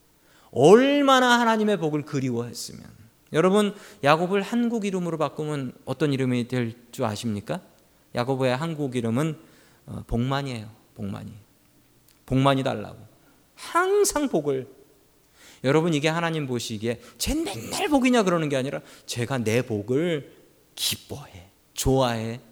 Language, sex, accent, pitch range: Korean, male, native, 120-200 Hz